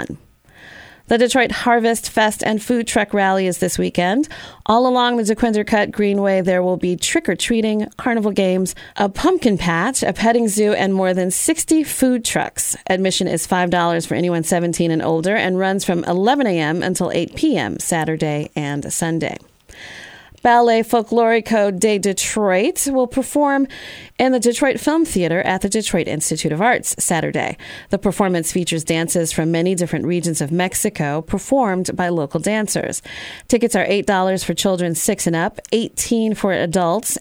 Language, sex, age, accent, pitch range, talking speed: English, female, 30-49, American, 170-225 Hz, 155 wpm